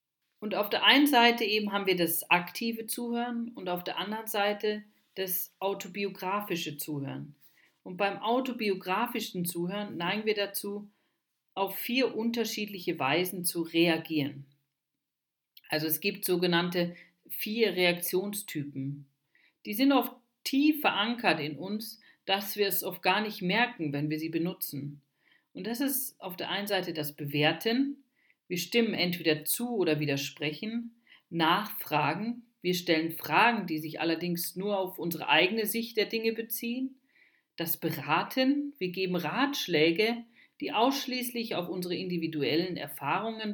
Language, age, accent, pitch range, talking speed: German, 40-59, German, 165-225 Hz, 135 wpm